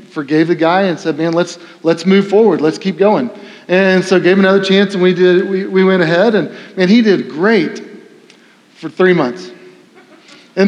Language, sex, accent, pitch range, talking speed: English, male, American, 175-210 Hz, 195 wpm